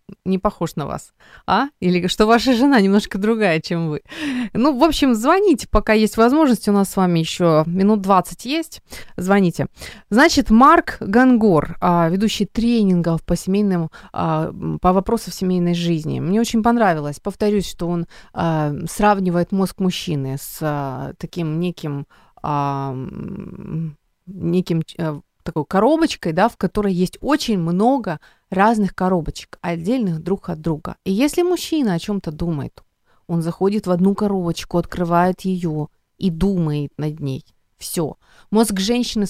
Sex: female